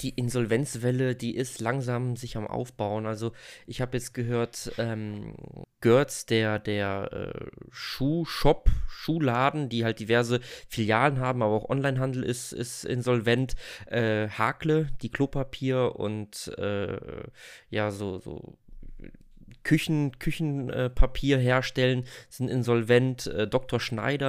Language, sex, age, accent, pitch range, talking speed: German, male, 20-39, German, 110-130 Hz, 120 wpm